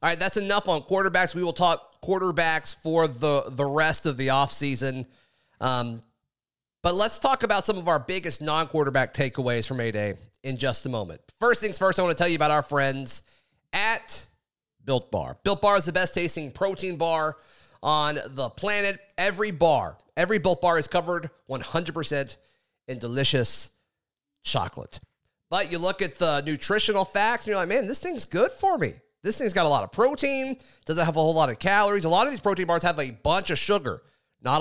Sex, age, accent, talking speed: male, 30-49, American, 190 wpm